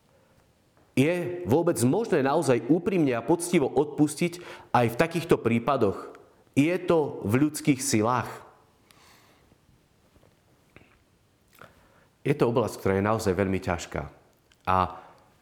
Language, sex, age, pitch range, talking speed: Slovak, male, 40-59, 95-120 Hz, 100 wpm